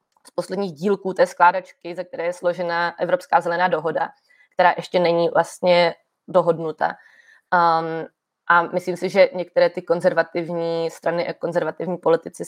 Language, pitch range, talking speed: Czech, 170-185 Hz, 135 wpm